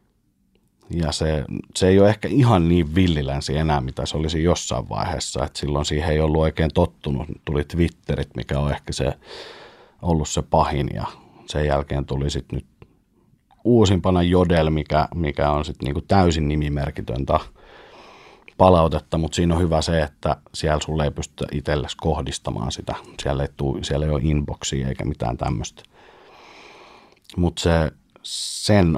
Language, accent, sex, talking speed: Finnish, native, male, 150 wpm